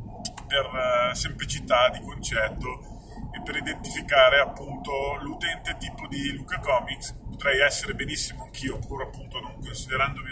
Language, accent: Italian, native